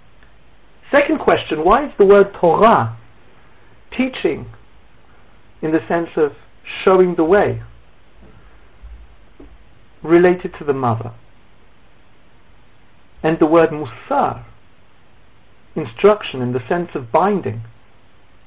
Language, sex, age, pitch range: English, male, 60-79, 110-180 Hz